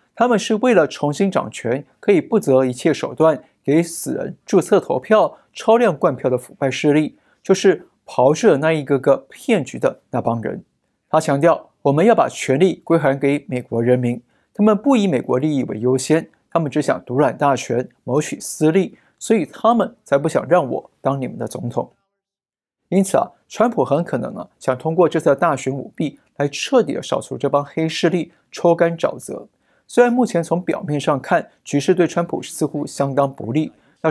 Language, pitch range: Chinese, 135-185 Hz